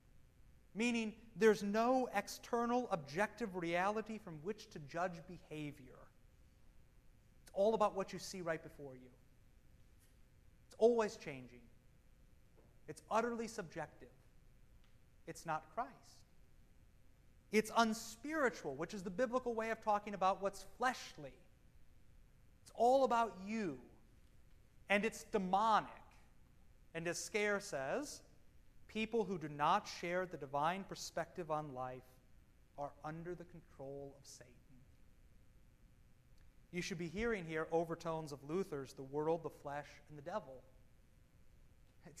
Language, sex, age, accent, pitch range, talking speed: English, male, 30-49, American, 140-215 Hz, 120 wpm